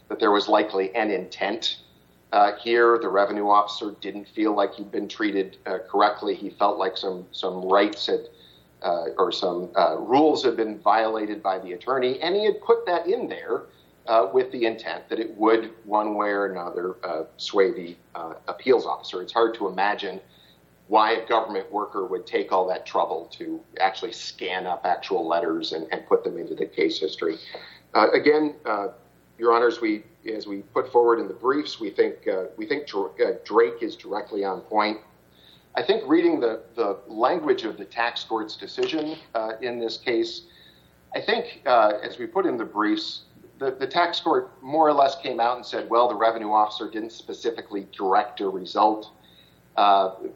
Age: 50-69